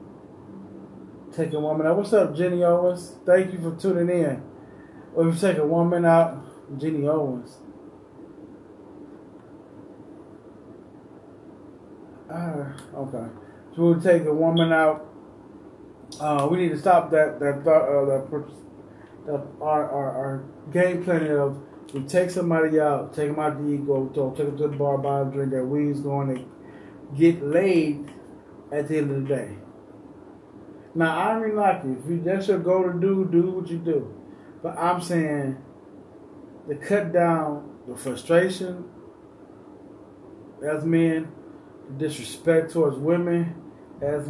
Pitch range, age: 145-180 Hz, 30-49